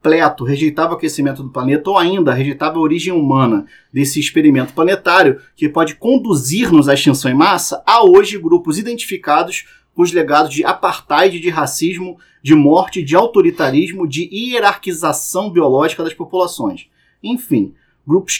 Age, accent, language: 30-49, Brazilian, Portuguese